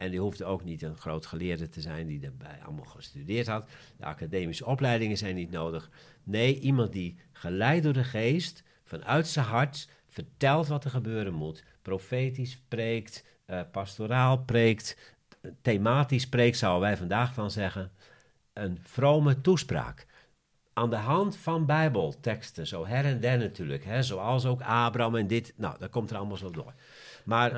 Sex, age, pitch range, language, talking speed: male, 50-69, 90-135 Hz, Dutch, 160 wpm